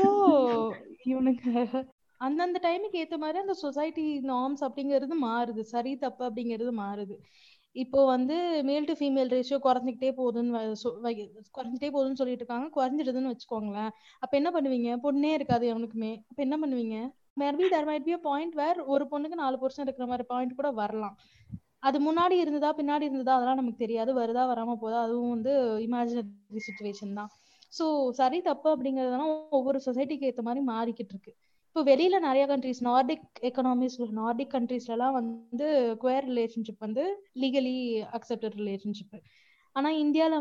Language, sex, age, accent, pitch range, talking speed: Tamil, female, 20-39, native, 235-290 Hz, 125 wpm